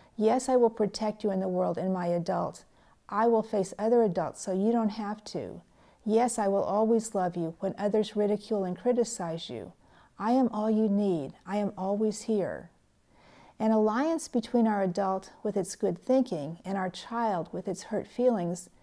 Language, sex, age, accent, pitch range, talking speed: English, female, 50-69, American, 190-230 Hz, 185 wpm